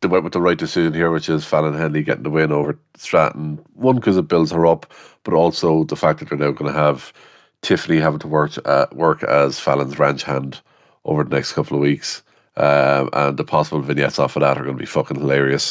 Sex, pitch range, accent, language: male, 70-80 Hz, Irish, English